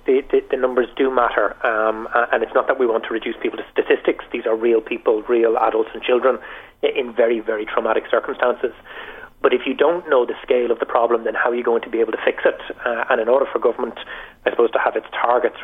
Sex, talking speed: male, 245 wpm